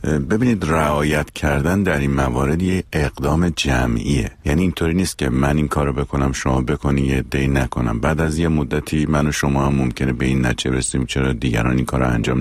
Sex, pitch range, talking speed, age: male, 65-85 Hz, 190 wpm, 50-69